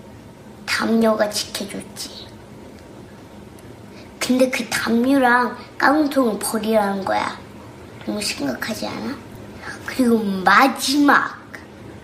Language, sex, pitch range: Korean, male, 205-280 Hz